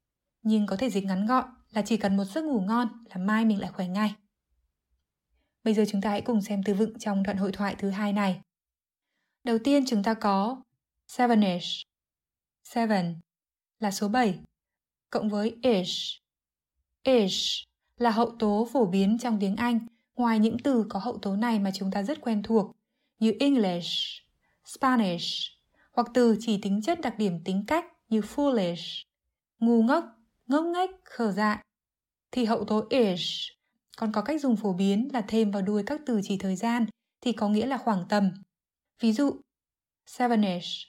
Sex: female